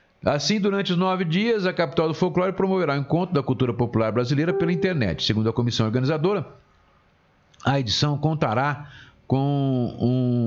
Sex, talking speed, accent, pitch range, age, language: male, 155 wpm, Brazilian, 120-155 Hz, 50-69, Portuguese